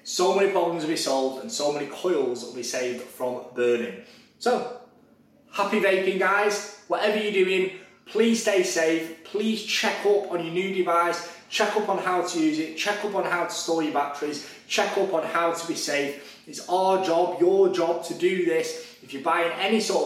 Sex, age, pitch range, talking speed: male, 20-39, 140-190 Hz, 200 wpm